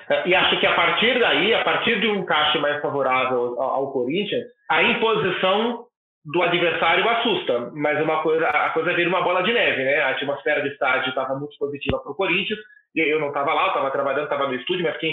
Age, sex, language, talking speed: 30-49, male, Portuguese, 210 wpm